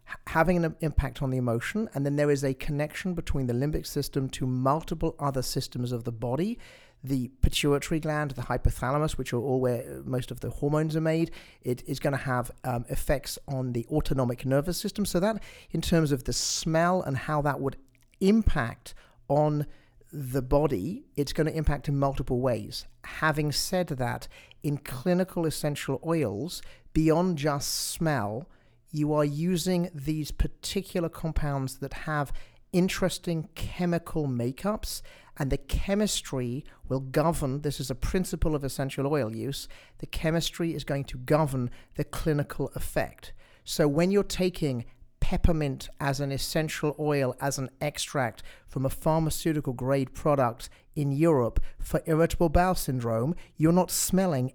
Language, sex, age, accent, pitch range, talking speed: English, male, 50-69, British, 130-165 Hz, 155 wpm